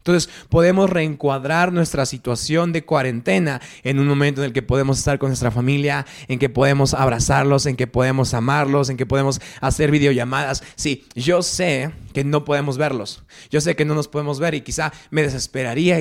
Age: 30-49